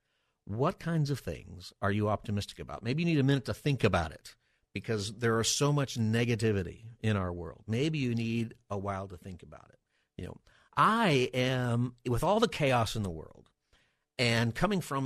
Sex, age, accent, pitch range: male, 50-69, American, 100-125 Hz